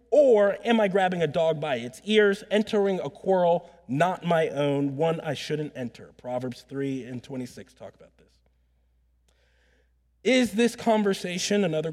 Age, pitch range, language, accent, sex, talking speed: 30-49, 125-195 Hz, English, American, male, 150 wpm